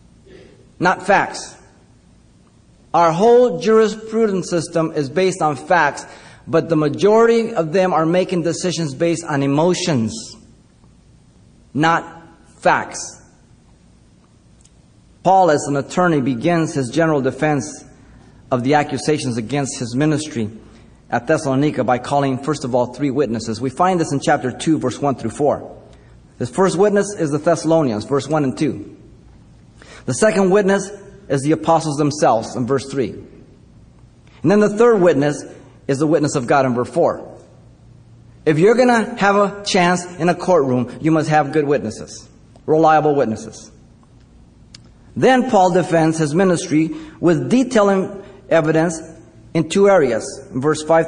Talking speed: 140 wpm